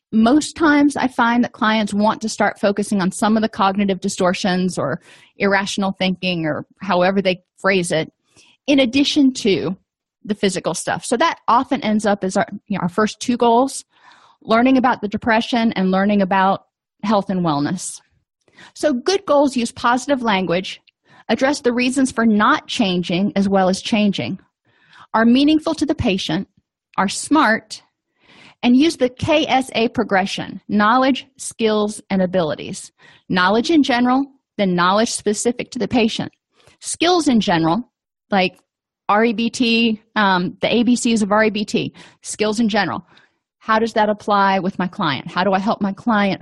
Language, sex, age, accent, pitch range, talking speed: English, female, 30-49, American, 195-255 Hz, 155 wpm